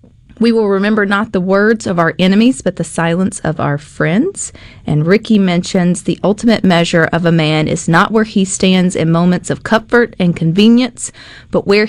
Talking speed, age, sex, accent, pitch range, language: 185 wpm, 40-59, female, American, 165-215 Hz, English